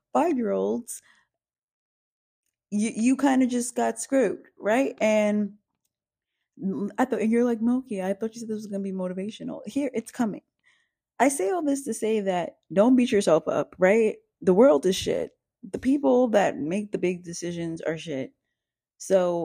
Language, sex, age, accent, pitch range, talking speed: English, female, 20-39, American, 180-235 Hz, 170 wpm